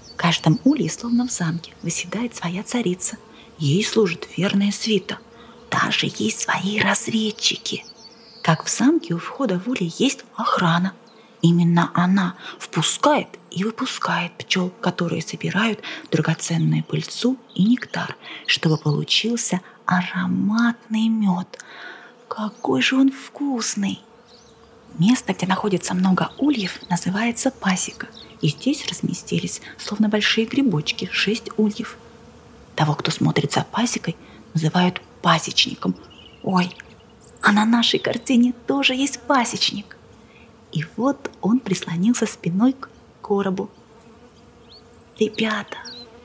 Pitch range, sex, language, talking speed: 185-240 Hz, female, Russian, 110 wpm